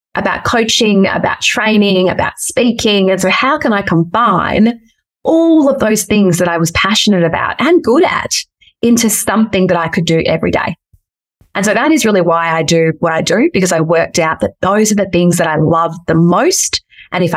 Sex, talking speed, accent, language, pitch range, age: female, 205 wpm, Australian, English, 175-225 Hz, 30-49